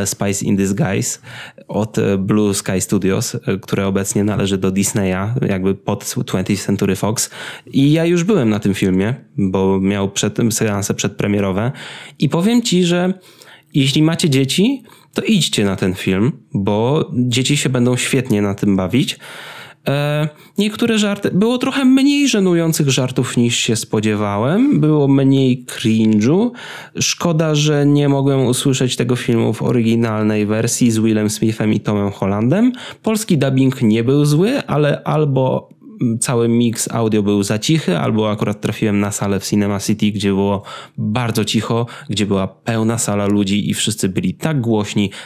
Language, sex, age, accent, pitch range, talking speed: Polish, male, 20-39, native, 100-150 Hz, 150 wpm